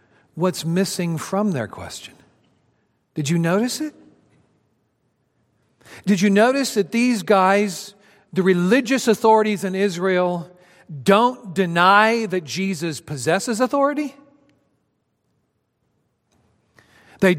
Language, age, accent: English, 50-69, American